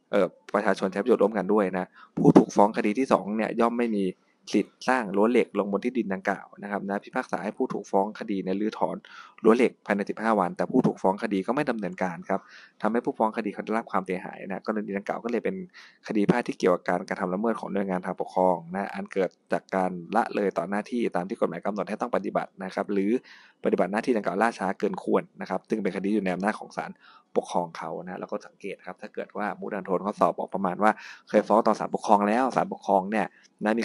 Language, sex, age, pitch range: Thai, male, 20-39, 95-110 Hz